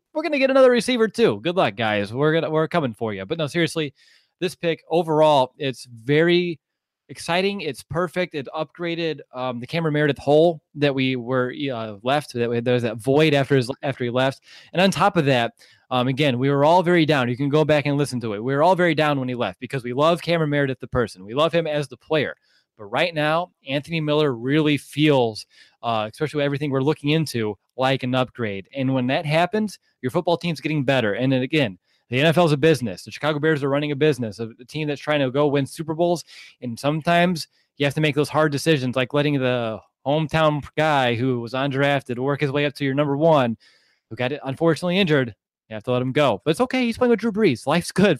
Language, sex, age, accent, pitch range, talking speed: English, male, 20-39, American, 130-160 Hz, 235 wpm